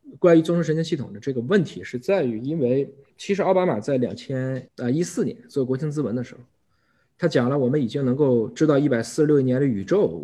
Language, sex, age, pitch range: Chinese, male, 20-39, 120-160 Hz